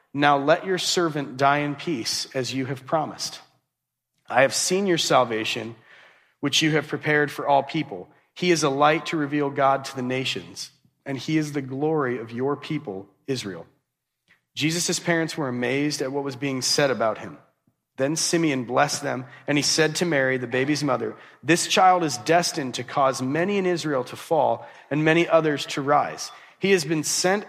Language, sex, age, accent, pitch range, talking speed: English, male, 40-59, American, 145-185 Hz, 185 wpm